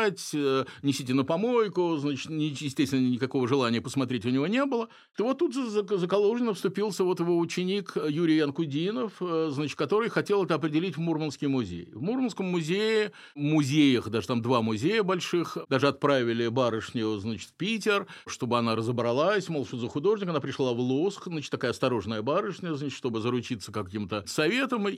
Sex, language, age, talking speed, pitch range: male, Russian, 50-69, 160 wpm, 130-180 Hz